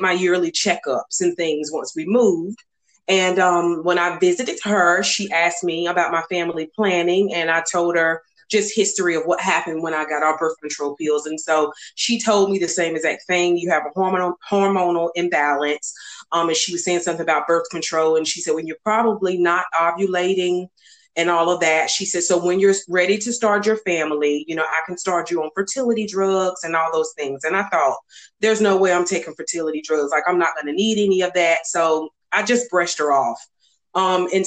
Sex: female